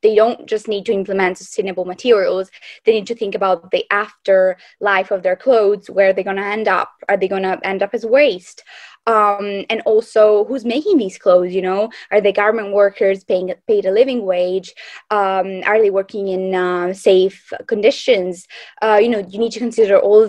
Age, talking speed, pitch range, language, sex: 20-39, 200 wpm, 190-230 Hz, English, female